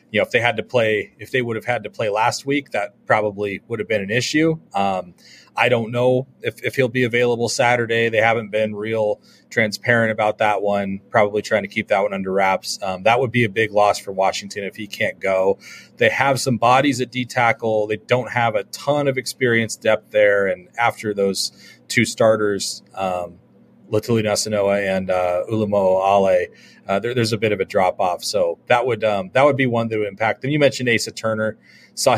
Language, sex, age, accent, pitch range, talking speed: English, male, 30-49, American, 100-125 Hz, 215 wpm